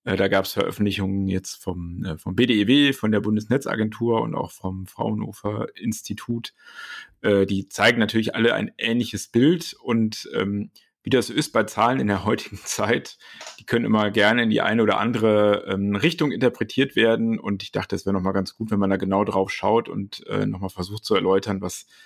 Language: German